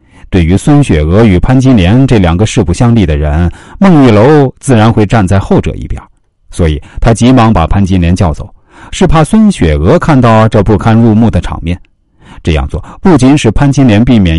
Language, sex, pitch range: Chinese, male, 95-145 Hz